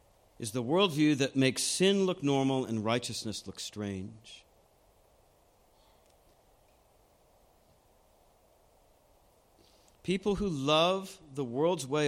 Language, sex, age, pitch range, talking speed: English, male, 50-69, 130-180 Hz, 90 wpm